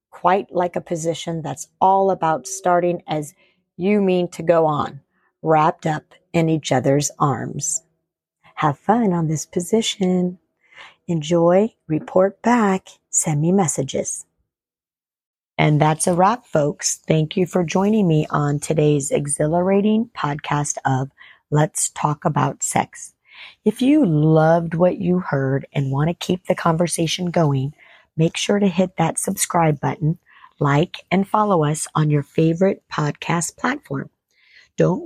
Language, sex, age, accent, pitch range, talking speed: English, female, 40-59, American, 155-190 Hz, 135 wpm